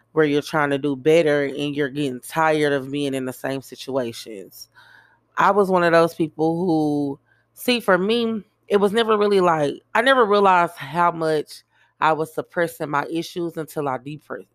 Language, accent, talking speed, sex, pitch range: English, American, 180 wpm, female, 145-180 Hz